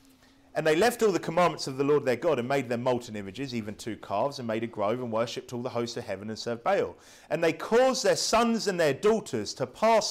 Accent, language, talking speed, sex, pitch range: British, English, 255 wpm, male, 135-205 Hz